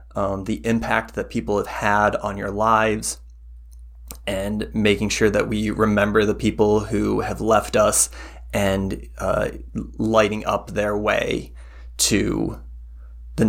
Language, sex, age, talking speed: English, male, 20-39, 135 wpm